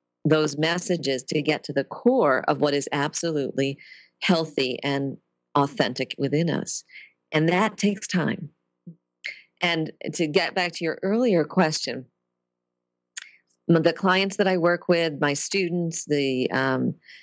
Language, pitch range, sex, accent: English, 145-185 Hz, female, American